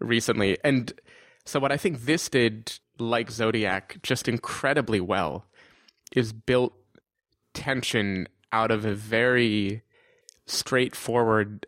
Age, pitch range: 20-39, 100-125 Hz